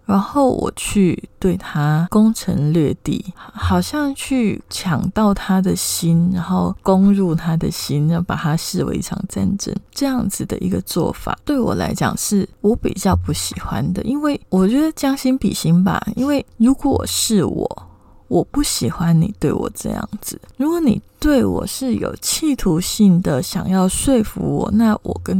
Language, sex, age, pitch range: Chinese, female, 20-39, 170-220 Hz